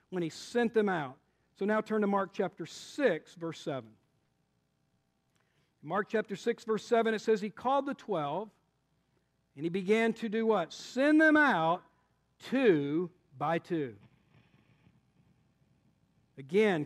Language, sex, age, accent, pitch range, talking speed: English, male, 50-69, American, 180-230 Hz, 135 wpm